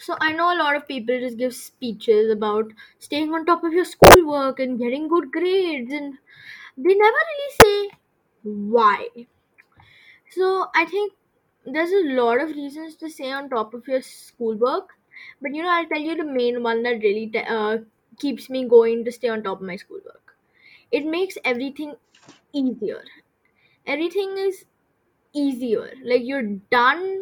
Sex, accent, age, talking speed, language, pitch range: female, Indian, 10-29, 165 wpm, English, 240-330 Hz